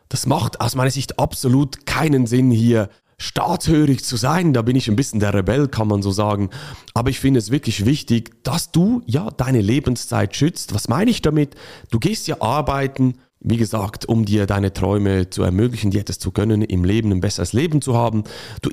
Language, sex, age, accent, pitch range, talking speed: German, male, 40-59, German, 100-130 Hz, 200 wpm